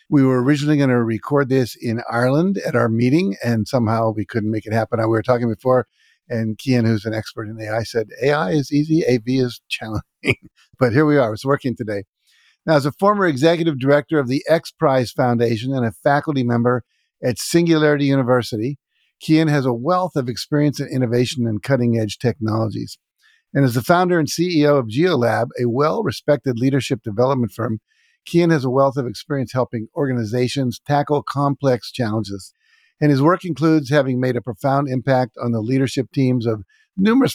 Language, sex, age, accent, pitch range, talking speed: English, male, 50-69, American, 120-145 Hz, 180 wpm